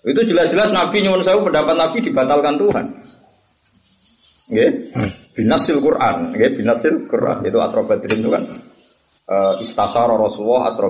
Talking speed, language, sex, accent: 125 wpm, Indonesian, male, native